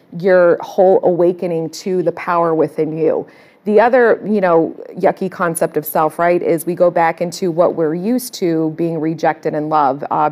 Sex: female